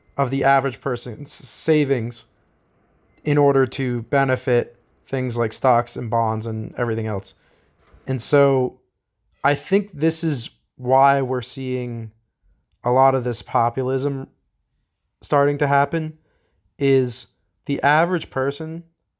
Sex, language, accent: male, English, American